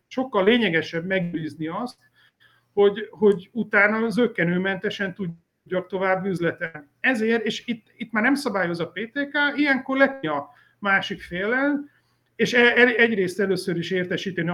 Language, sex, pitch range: Hungarian, male, 170-220 Hz